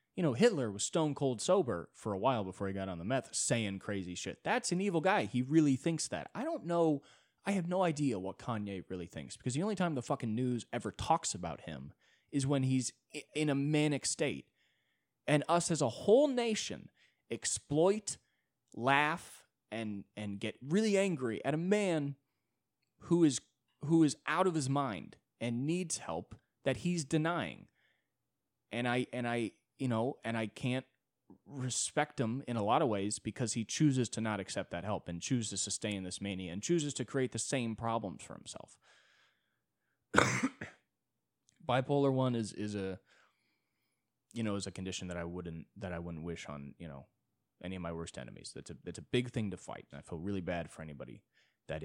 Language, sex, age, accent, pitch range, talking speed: English, male, 20-39, American, 100-150 Hz, 190 wpm